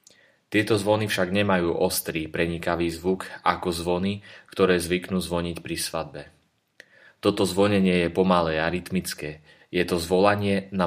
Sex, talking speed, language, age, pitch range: male, 135 wpm, Slovak, 30-49, 85-95 Hz